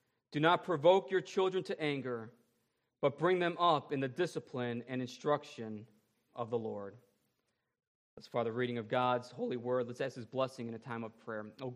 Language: English